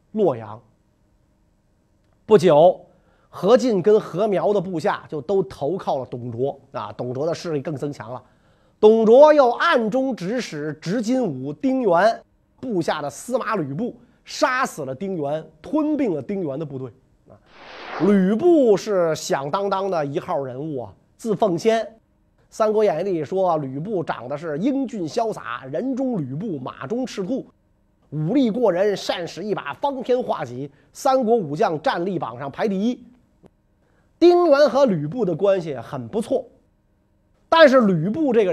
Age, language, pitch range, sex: 30-49, Chinese, 145-230 Hz, male